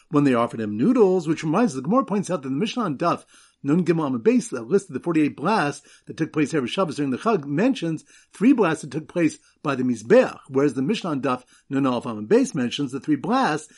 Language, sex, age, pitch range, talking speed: English, male, 50-69, 145-210 Hz, 220 wpm